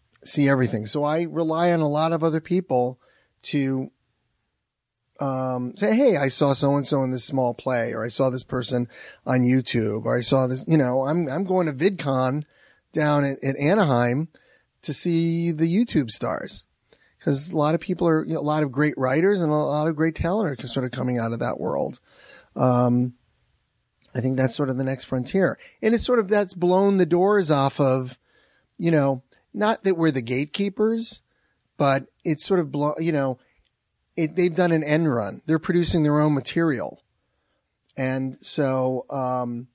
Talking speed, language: 185 wpm, English